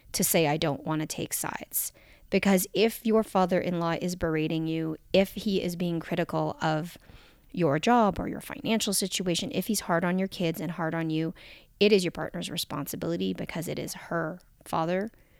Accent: American